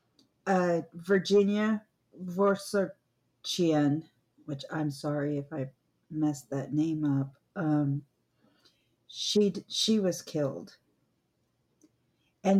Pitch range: 150-195 Hz